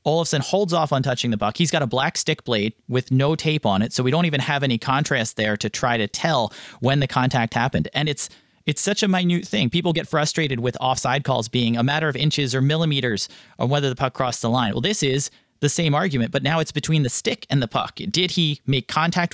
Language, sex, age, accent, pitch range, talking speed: English, male, 30-49, American, 125-160 Hz, 250 wpm